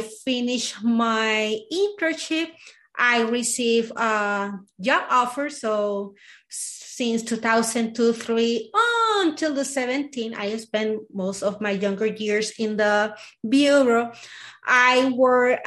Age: 30-49